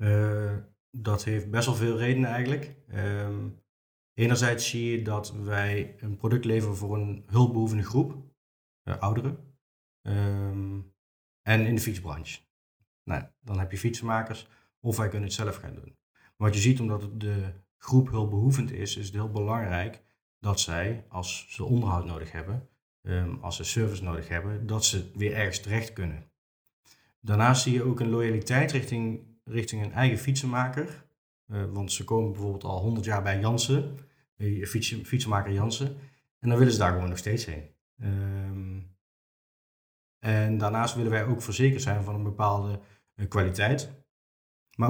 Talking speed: 145 wpm